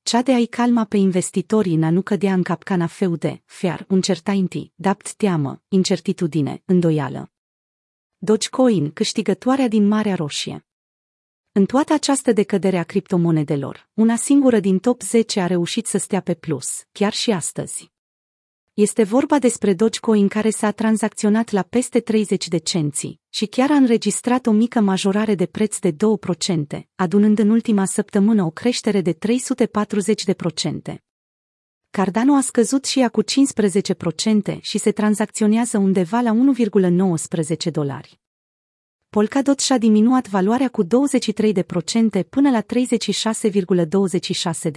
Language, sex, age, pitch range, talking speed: Romanian, female, 30-49, 180-225 Hz, 130 wpm